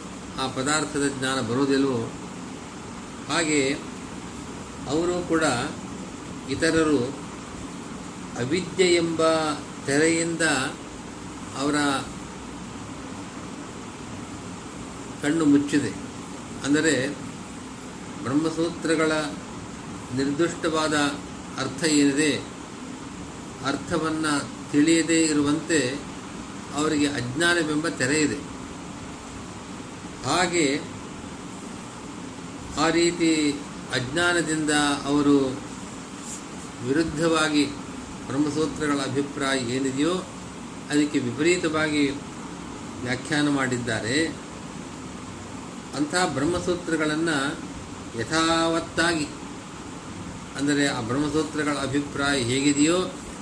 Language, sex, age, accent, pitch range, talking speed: Kannada, male, 50-69, native, 140-160 Hz, 50 wpm